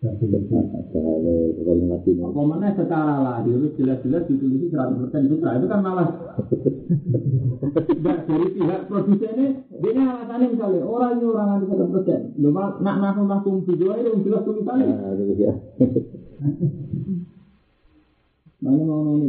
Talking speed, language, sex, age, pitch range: 120 wpm, Indonesian, male, 50-69, 125-195 Hz